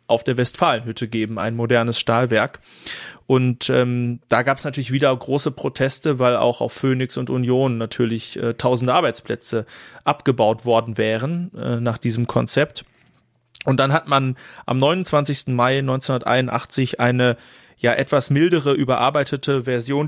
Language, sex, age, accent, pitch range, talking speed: German, male, 30-49, German, 120-140 Hz, 140 wpm